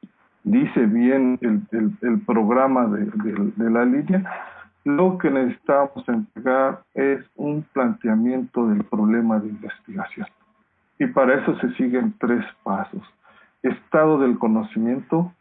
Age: 50-69